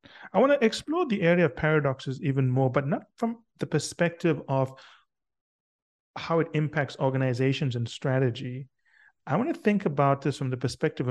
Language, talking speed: English, 170 wpm